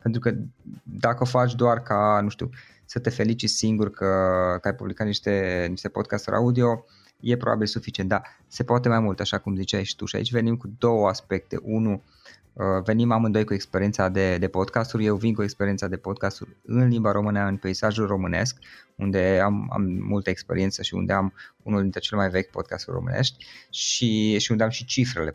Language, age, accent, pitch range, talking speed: Romanian, 20-39, native, 100-125 Hz, 190 wpm